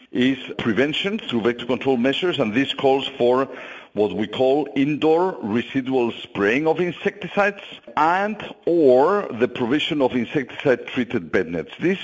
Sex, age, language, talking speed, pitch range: male, 50-69, English, 135 wpm, 120-150 Hz